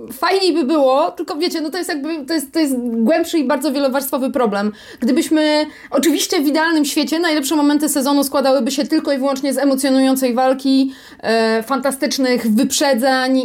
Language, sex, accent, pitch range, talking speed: Polish, female, native, 230-280 Hz, 165 wpm